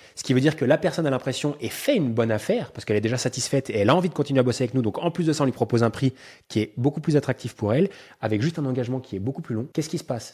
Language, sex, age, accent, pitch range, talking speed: French, male, 20-39, French, 115-140 Hz, 340 wpm